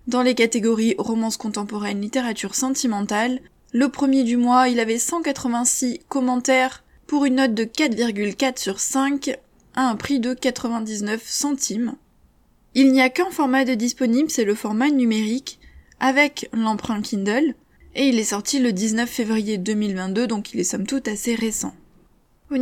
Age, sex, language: 20-39, female, French